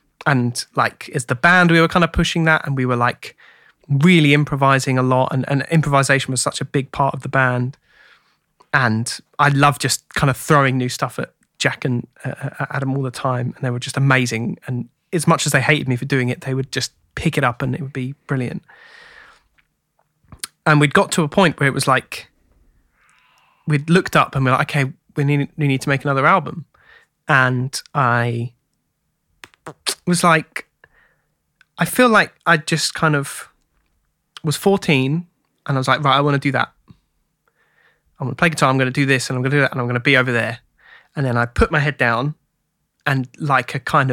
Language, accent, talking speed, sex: English, British, 210 wpm, male